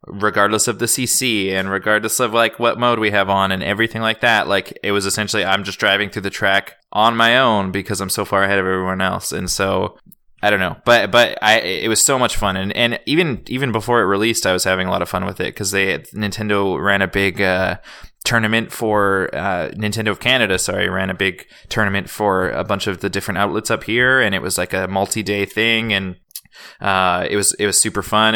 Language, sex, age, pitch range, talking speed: English, male, 20-39, 95-110 Hz, 230 wpm